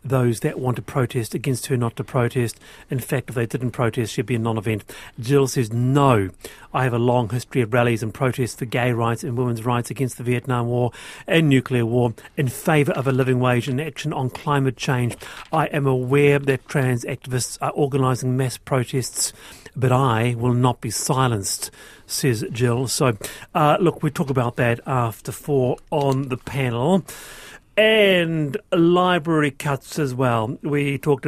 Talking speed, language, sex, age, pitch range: 180 wpm, English, male, 40-59, 120-145 Hz